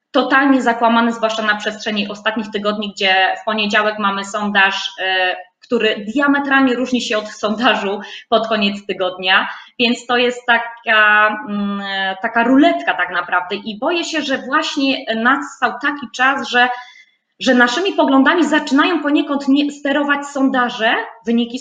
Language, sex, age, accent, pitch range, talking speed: Polish, female, 20-39, native, 195-255 Hz, 135 wpm